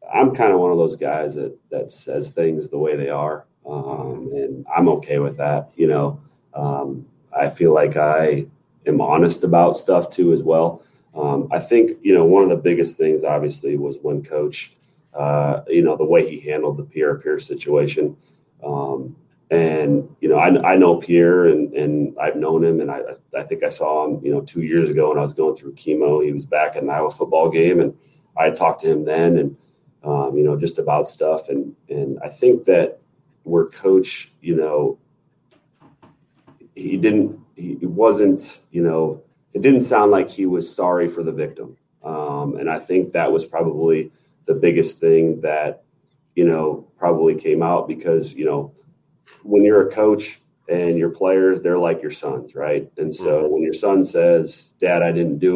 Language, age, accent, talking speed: English, 30-49, American, 190 wpm